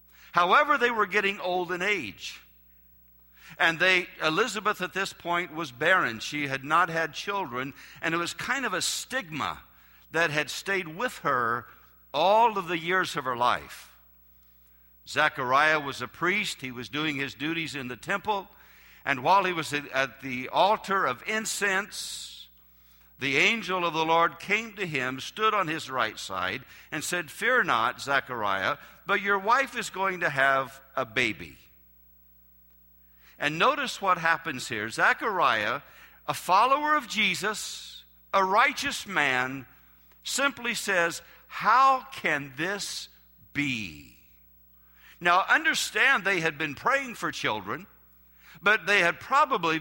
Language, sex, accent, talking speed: English, male, American, 140 wpm